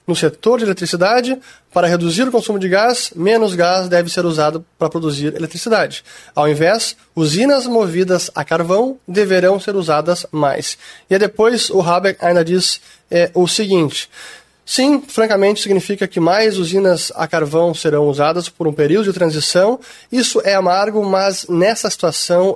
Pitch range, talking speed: 160-210 Hz, 150 wpm